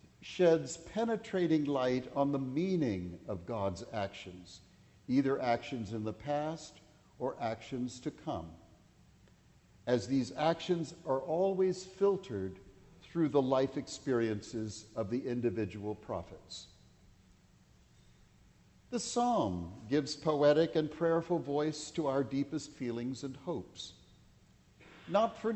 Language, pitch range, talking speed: English, 115-160 Hz, 110 wpm